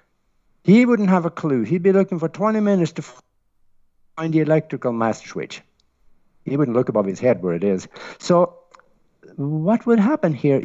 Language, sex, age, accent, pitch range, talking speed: English, male, 60-79, Norwegian, 140-190 Hz, 175 wpm